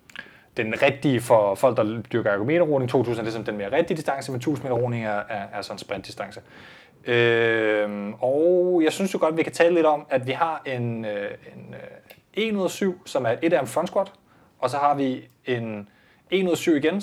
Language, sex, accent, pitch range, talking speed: Danish, male, native, 115-155 Hz, 185 wpm